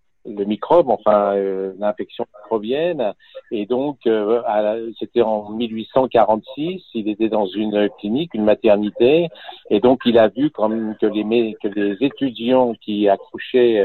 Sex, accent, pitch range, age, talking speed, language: male, French, 105-125 Hz, 50-69, 145 wpm, French